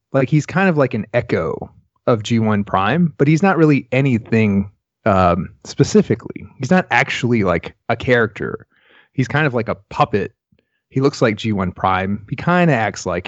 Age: 30-49